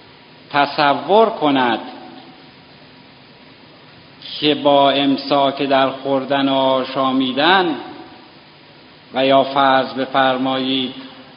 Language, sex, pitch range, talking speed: Persian, male, 120-165 Hz, 75 wpm